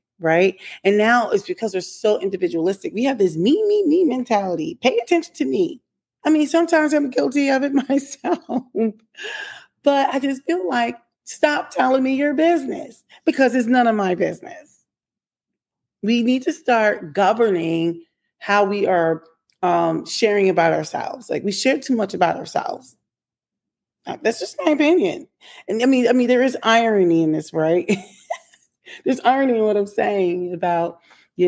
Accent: American